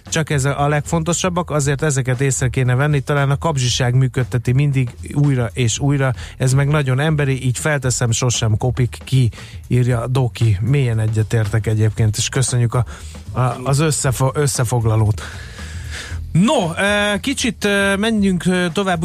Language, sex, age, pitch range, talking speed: Hungarian, male, 30-49, 125-155 Hz, 125 wpm